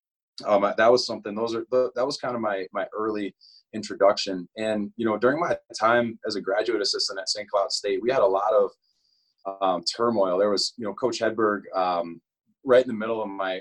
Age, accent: 30-49, American